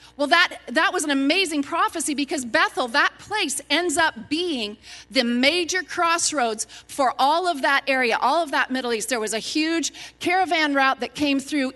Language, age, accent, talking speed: English, 40-59, American, 185 wpm